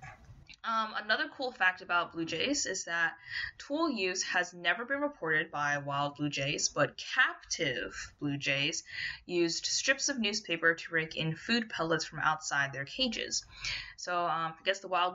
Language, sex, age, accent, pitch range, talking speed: English, female, 10-29, American, 150-195 Hz, 165 wpm